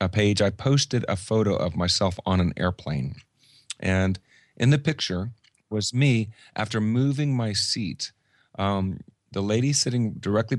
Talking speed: 140 wpm